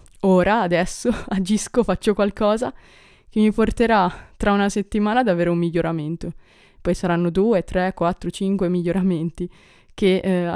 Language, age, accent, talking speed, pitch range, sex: Italian, 20-39, native, 135 wpm, 170-215 Hz, female